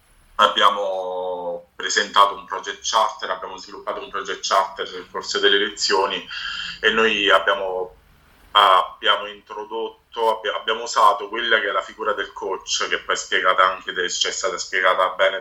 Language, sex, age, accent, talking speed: Italian, male, 30-49, native, 150 wpm